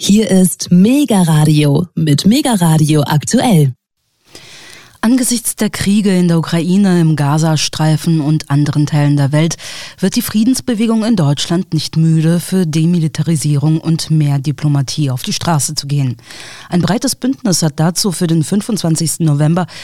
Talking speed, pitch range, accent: 135 wpm, 155-195 Hz, German